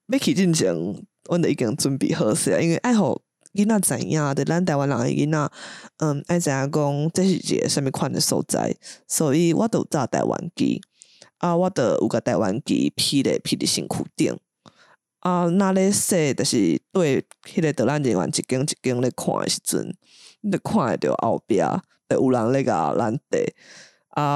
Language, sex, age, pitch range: English, female, 20-39, 140-180 Hz